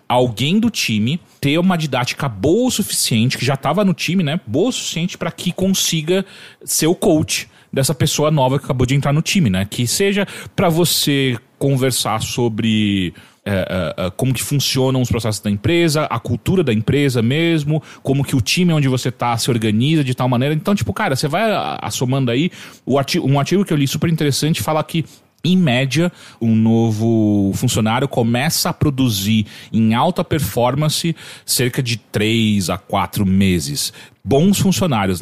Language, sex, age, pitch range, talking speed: English, male, 30-49, 110-150 Hz, 170 wpm